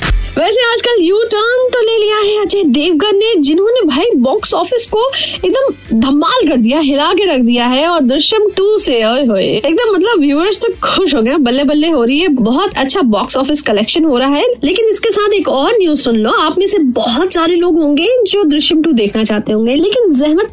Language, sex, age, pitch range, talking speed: Hindi, female, 20-39, 245-350 Hz, 210 wpm